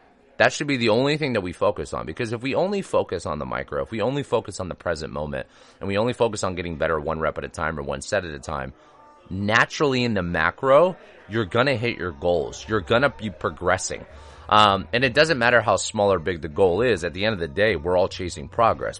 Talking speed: 255 wpm